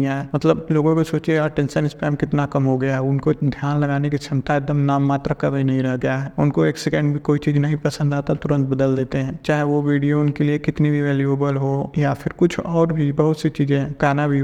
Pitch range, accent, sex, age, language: 140-150 Hz, native, male, 20-39, Hindi